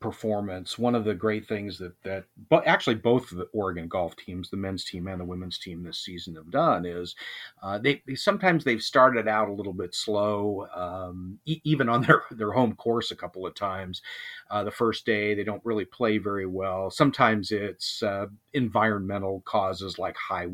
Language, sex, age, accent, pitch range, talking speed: English, male, 40-59, American, 95-120 Hz, 200 wpm